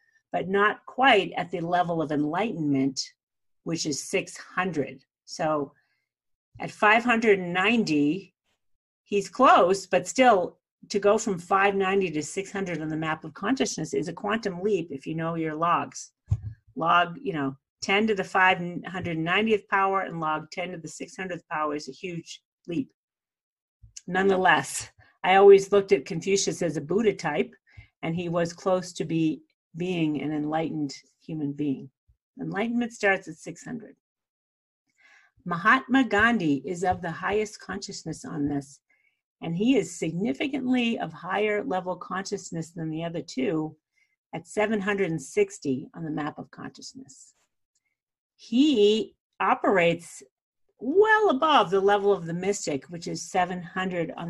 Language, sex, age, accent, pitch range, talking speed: English, female, 50-69, American, 155-205 Hz, 135 wpm